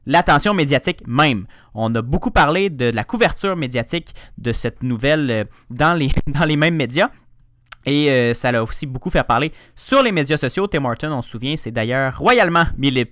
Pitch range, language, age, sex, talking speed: 120-155 Hz, French, 30-49, male, 190 wpm